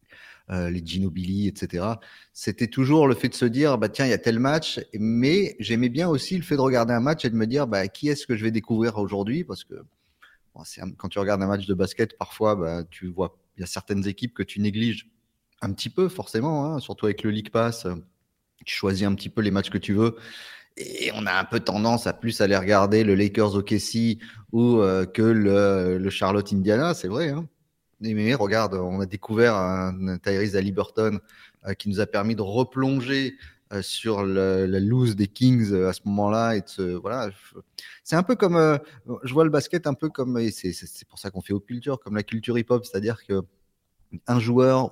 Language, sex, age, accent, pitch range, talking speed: French, male, 30-49, French, 100-120 Hz, 225 wpm